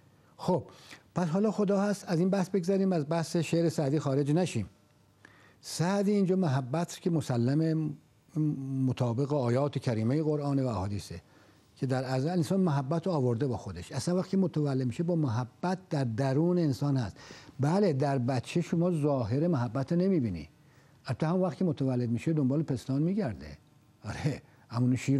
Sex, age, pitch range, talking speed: male, 60-79, 130-180 Hz, 150 wpm